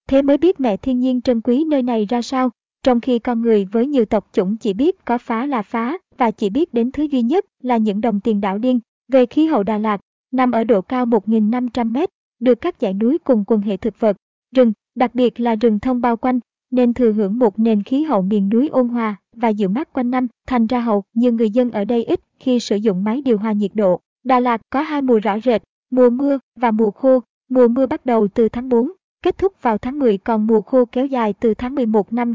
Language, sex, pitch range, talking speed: Vietnamese, male, 220-255 Hz, 245 wpm